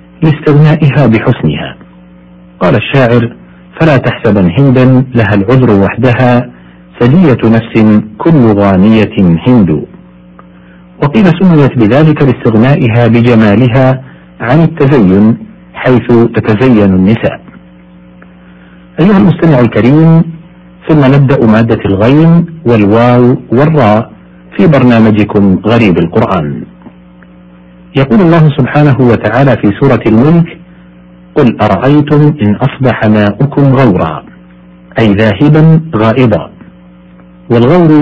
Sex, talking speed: male, 85 wpm